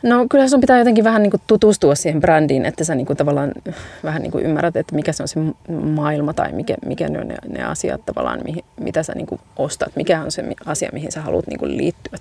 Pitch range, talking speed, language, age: 155-180 Hz, 235 wpm, Finnish, 30-49